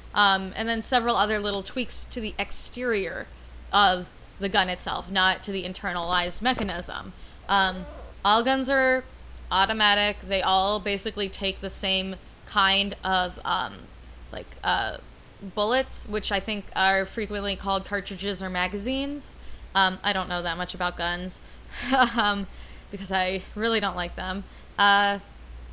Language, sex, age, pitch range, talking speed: English, female, 20-39, 190-225 Hz, 140 wpm